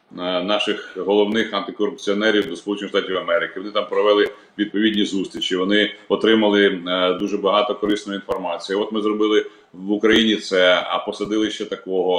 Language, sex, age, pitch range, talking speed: Ukrainian, male, 30-49, 105-125 Hz, 140 wpm